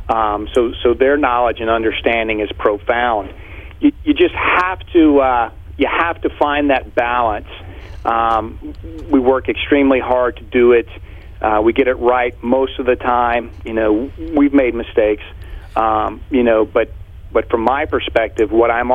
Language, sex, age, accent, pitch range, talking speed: English, male, 40-59, American, 95-130 Hz, 170 wpm